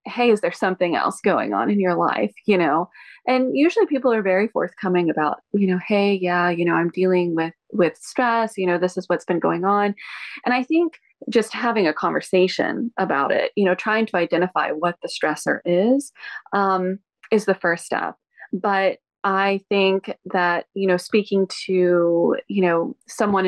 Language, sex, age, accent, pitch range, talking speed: English, female, 20-39, American, 175-210 Hz, 185 wpm